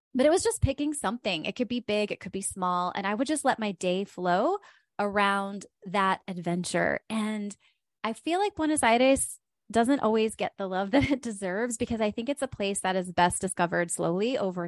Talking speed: 210 wpm